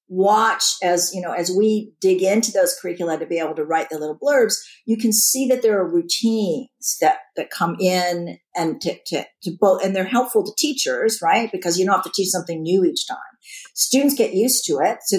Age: 50-69